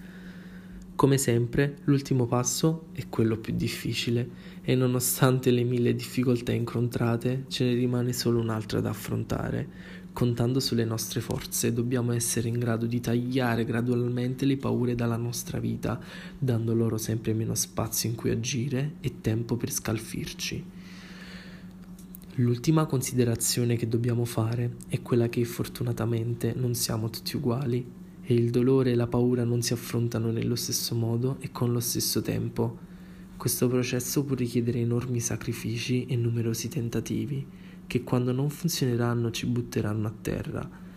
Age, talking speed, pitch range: 20-39, 140 wpm, 115-145 Hz